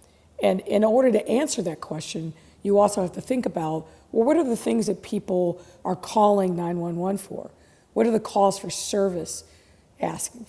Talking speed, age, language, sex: 175 wpm, 50-69, English, female